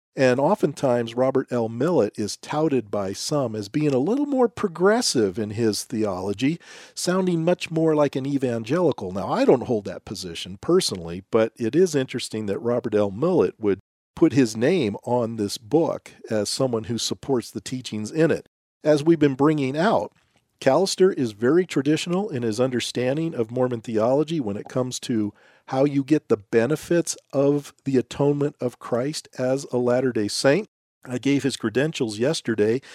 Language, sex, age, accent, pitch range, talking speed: English, male, 40-59, American, 115-150 Hz, 170 wpm